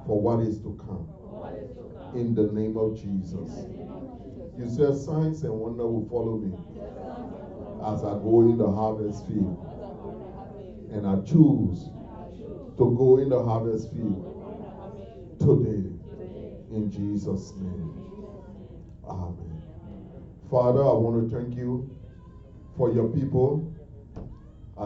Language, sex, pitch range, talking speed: English, male, 105-140 Hz, 115 wpm